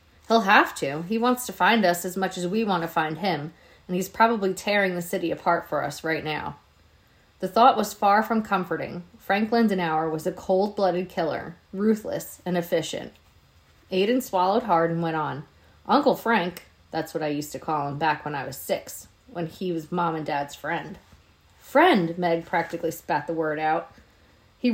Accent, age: American, 30-49